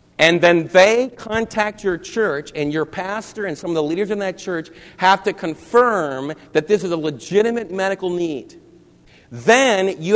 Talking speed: 170 wpm